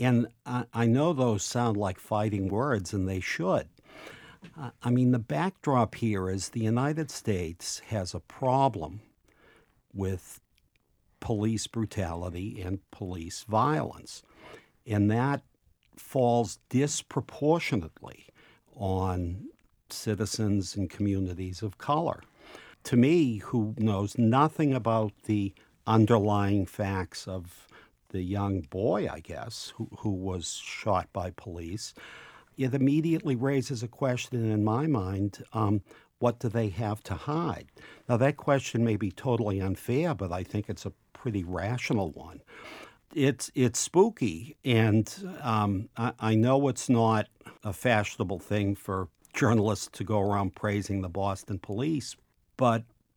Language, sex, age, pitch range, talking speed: English, male, 60-79, 100-125 Hz, 130 wpm